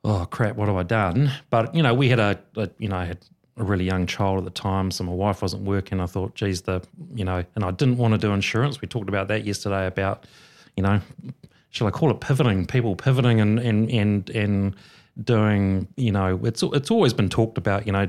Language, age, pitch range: English, 30-49, 95-110 Hz